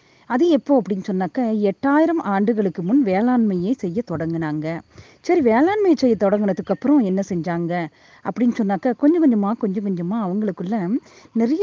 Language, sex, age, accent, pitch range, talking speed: Tamil, female, 30-49, native, 185-270 Hz, 125 wpm